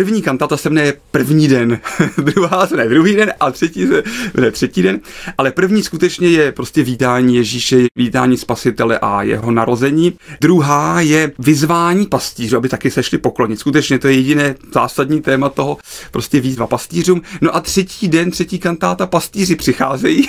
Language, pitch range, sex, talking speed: Czech, 125-155 Hz, male, 170 wpm